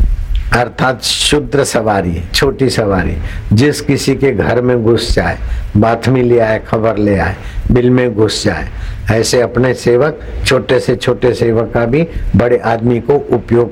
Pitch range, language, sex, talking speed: 100-130 Hz, Hindi, male, 155 wpm